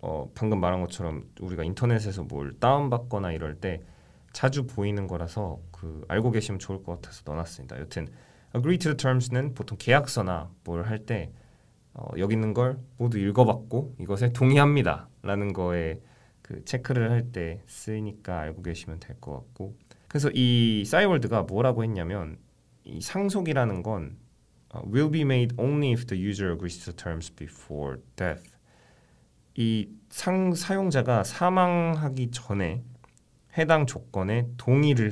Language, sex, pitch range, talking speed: English, male, 85-125 Hz, 130 wpm